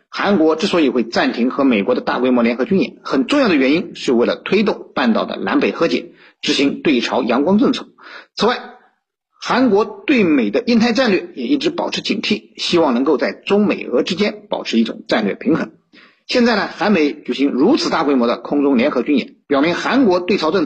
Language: Chinese